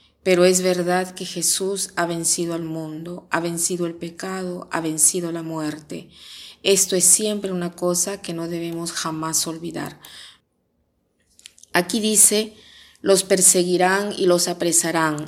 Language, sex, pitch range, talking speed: Spanish, female, 165-185 Hz, 135 wpm